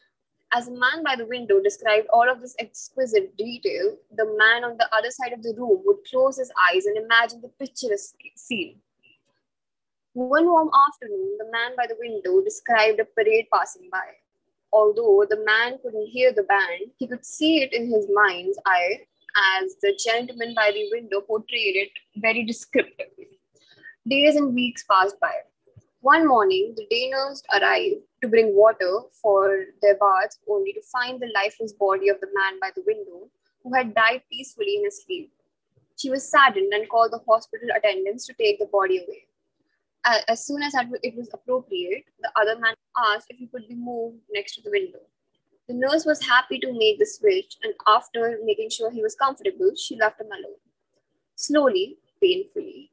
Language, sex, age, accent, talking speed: English, female, 20-39, Indian, 180 wpm